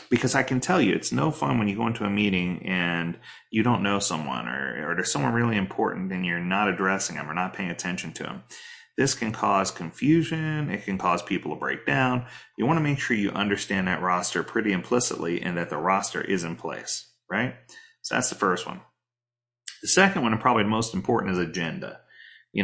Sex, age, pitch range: male, 30-49, 100-150 Hz